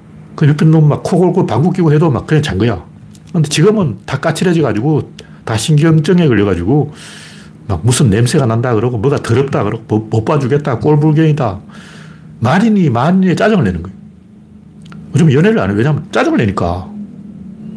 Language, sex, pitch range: Korean, male, 135-185 Hz